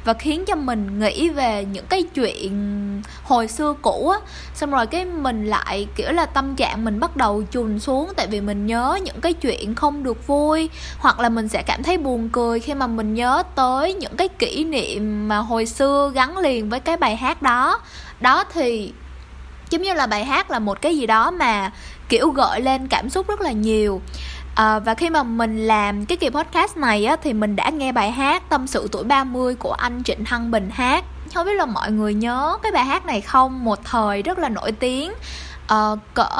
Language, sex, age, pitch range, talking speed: Vietnamese, female, 10-29, 220-305 Hz, 215 wpm